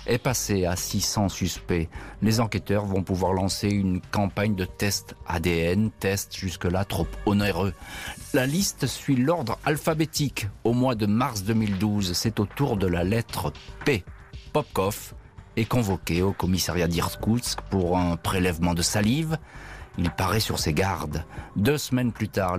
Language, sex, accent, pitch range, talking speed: French, male, French, 95-115 Hz, 150 wpm